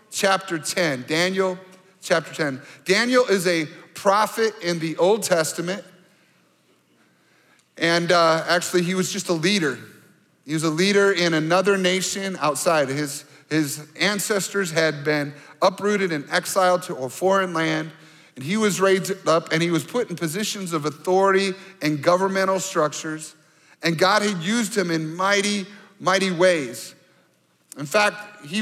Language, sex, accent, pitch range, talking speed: English, male, American, 160-200 Hz, 145 wpm